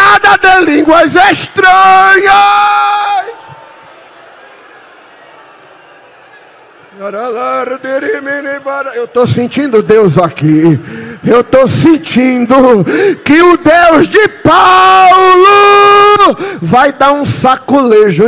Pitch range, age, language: 195-305 Hz, 50-69, Portuguese